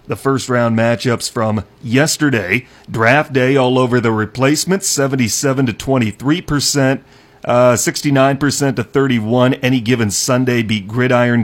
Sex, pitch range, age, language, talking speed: male, 115-140 Hz, 40-59, English, 130 wpm